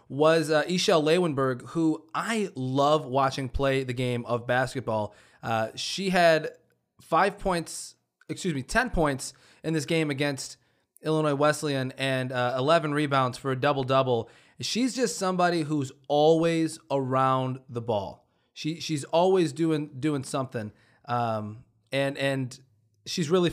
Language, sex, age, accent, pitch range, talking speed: English, male, 20-39, American, 130-165 Hz, 140 wpm